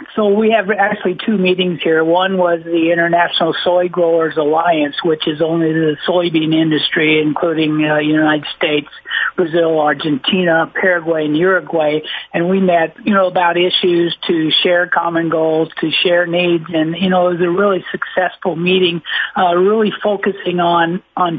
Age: 50-69